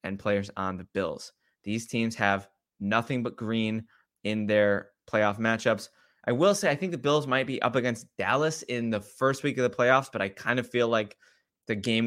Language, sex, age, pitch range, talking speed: English, male, 20-39, 100-120 Hz, 210 wpm